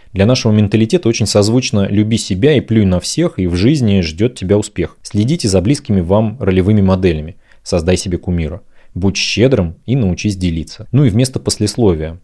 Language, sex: Russian, male